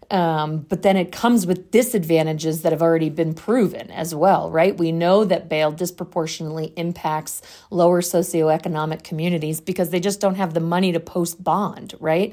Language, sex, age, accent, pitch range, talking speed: English, female, 40-59, American, 155-180 Hz, 170 wpm